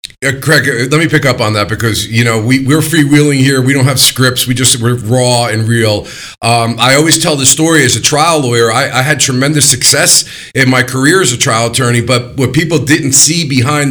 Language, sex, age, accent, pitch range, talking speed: English, male, 40-59, American, 125-155 Hz, 225 wpm